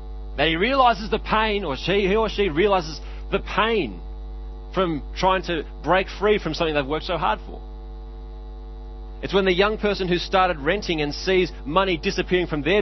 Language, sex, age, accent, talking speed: English, male, 30-49, Australian, 180 wpm